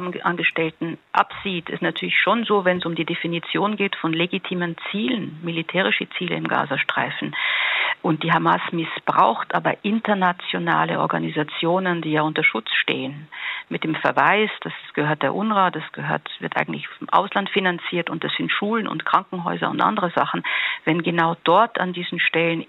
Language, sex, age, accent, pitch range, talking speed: German, female, 50-69, German, 165-200 Hz, 155 wpm